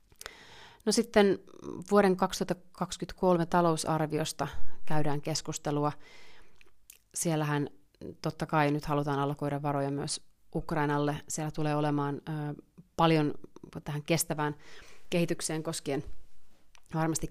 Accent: native